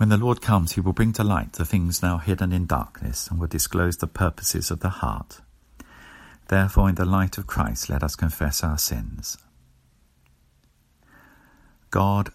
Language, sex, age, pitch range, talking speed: English, male, 50-69, 75-95 Hz, 170 wpm